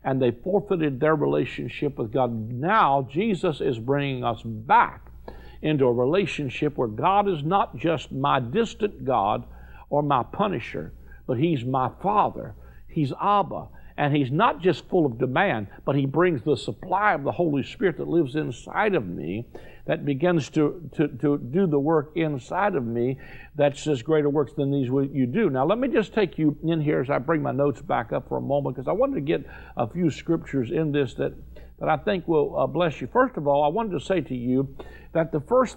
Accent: American